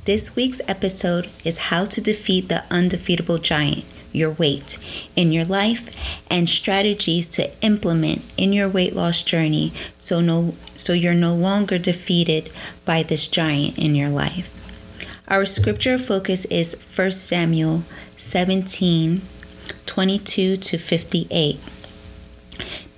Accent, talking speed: American, 120 wpm